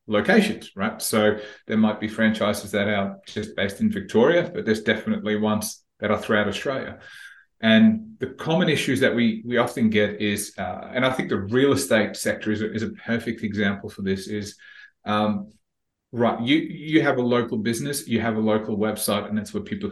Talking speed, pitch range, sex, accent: 195 wpm, 110-125 Hz, male, Australian